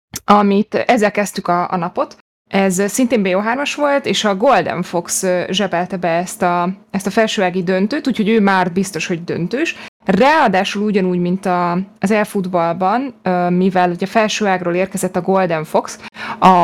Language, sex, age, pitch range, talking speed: Hungarian, female, 20-39, 180-215 Hz, 145 wpm